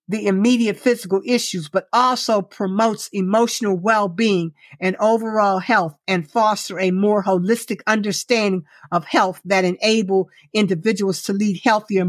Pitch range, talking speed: 185-230 Hz, 130 wpm